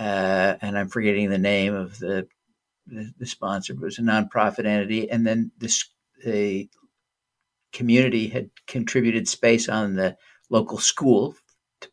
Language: English